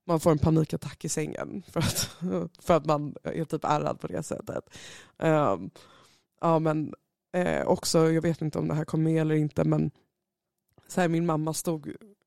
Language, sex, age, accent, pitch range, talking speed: Swedish, female, 20-39, native, 155-180 Hz, 175 wpm